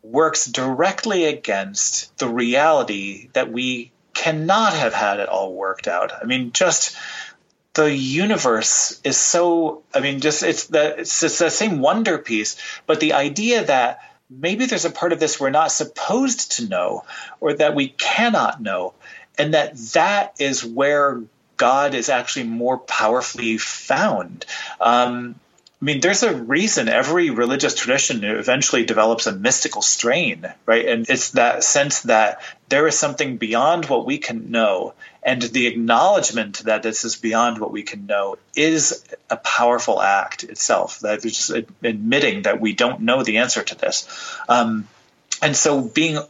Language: English